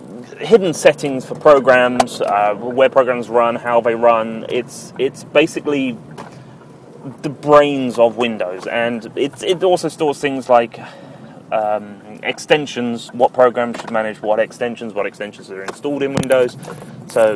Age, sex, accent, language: 30-49, male, British, English